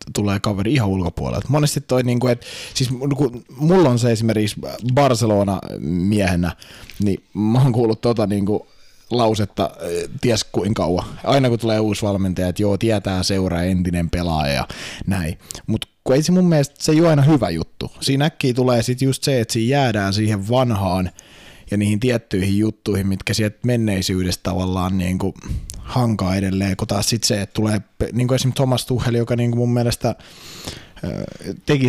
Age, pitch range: 20-39, 95-120 Hz